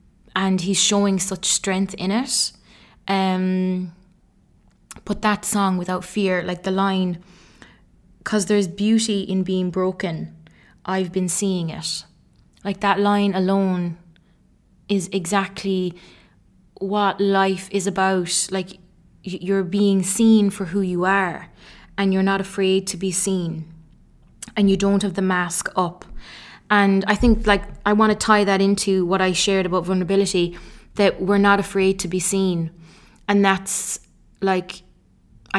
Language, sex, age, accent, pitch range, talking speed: English, female, 20-39, Irish, 175-195 Hz, 140 wpm